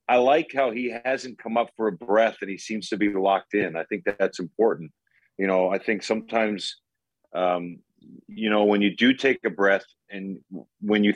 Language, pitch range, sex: English, 95-120 Hz, male